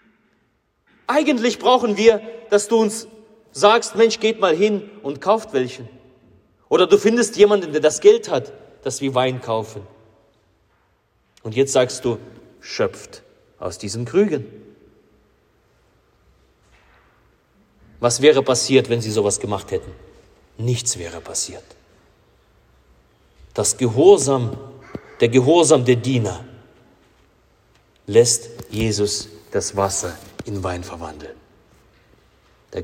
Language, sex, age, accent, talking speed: German, male, 40-59, German, 110 wpm